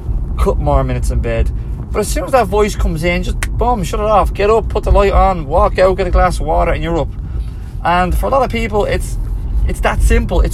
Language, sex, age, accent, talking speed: English, male, 20-39, British, 255 wpm